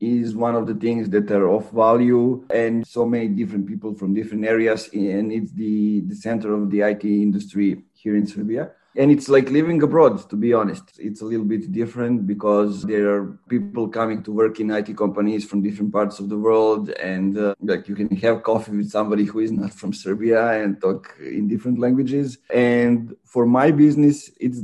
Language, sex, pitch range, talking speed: Turkish, male, 105-120 Hz, 200 wpm